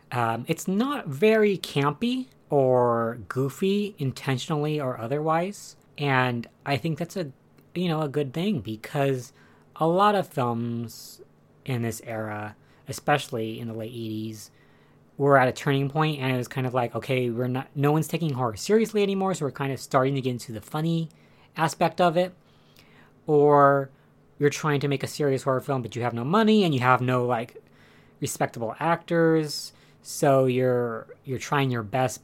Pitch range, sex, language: 125-160 Hz, female, English